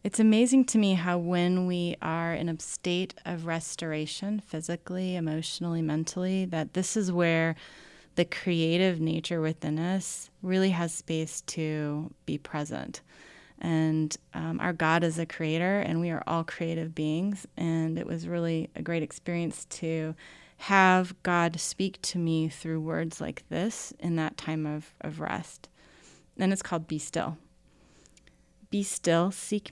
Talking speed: 150 wpm